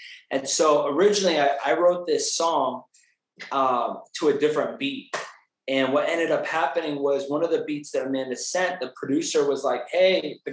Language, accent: English, American